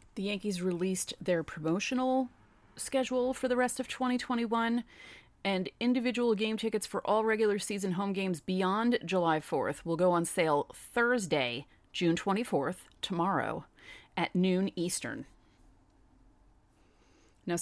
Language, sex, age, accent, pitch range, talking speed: English, female, 30-49, American, 165-220 Hz, 125 wpm